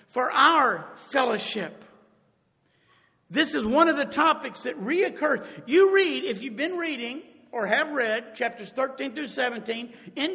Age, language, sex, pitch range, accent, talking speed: 50-69, English, male, 220-310 Hz, American, 145 wpm